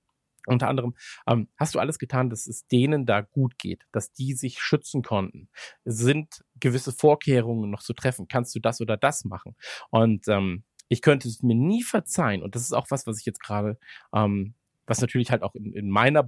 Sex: male